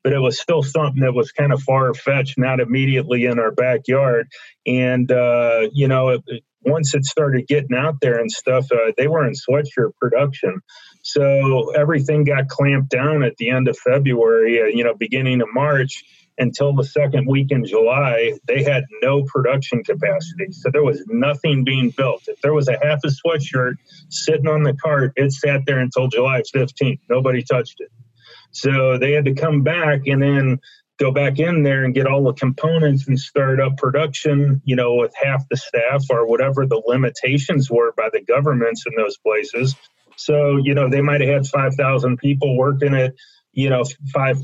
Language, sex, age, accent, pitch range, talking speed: English, male, 40-59, American, 125-145 Hz, 185 wpm